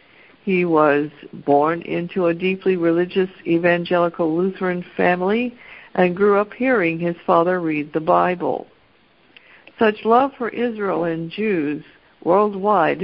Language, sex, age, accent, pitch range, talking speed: English, female, 60-79, American, 165-205 Hz, 120 wpm